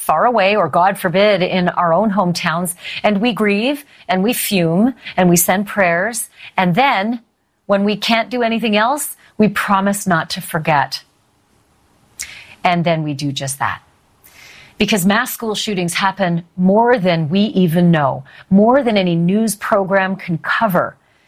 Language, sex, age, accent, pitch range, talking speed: English, female, 40-59, American, 175-235 Hz, 155 wpm